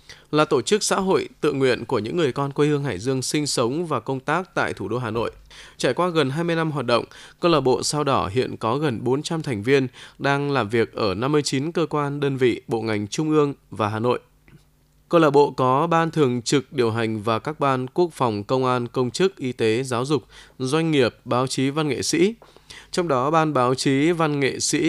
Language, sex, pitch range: Vietnamese, male, 125-155 Hz